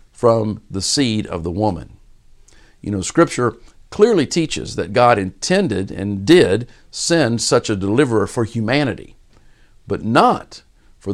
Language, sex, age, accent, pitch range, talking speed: English, male, 50-69, American, 100-135 Hz, 135 wpm